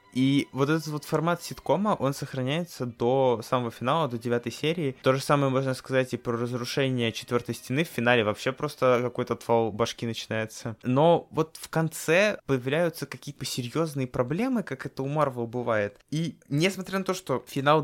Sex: male